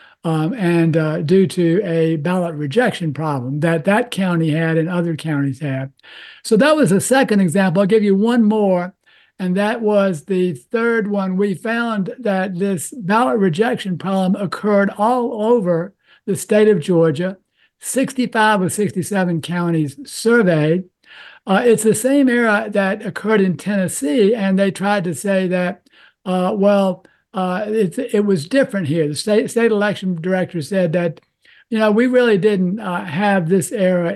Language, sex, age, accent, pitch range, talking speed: English, male, 60-79, American, 180-220 Hz, 160 wpm